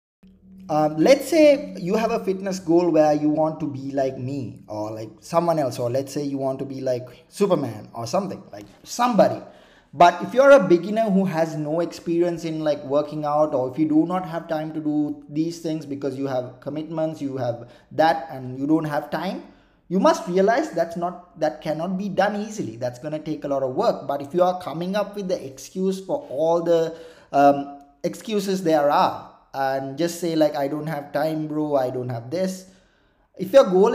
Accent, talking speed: Indian, 210 wpm